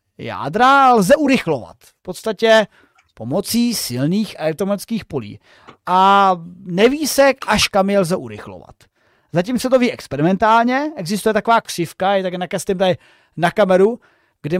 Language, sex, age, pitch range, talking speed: Czech, male, 30-49, 180-225 Hz, 125 wpm